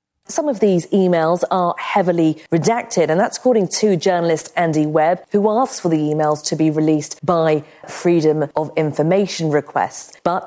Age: 40-59